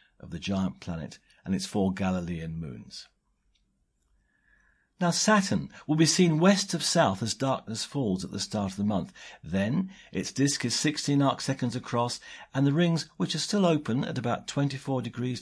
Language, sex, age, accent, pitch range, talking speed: English, male, 50-69, British, 100-135 Hz, 175 wpm